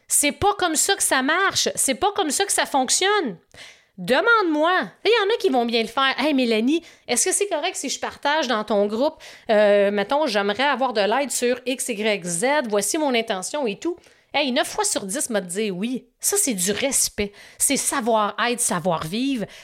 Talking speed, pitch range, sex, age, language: 215 wpm, 200-290 Hz, female, 30-49, French